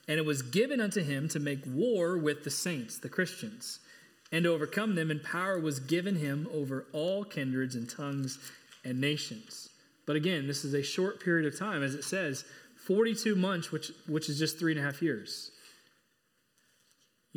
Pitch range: 135-170 Hz